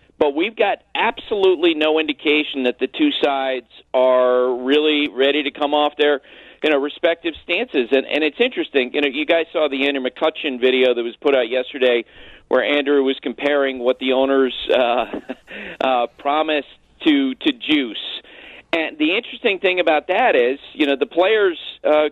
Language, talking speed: English, 175 wpm